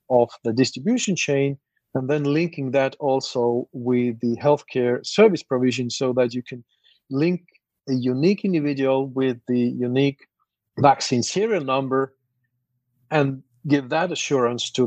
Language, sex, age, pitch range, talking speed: English, male, 40-59, 120-145 Hz, 135 wpm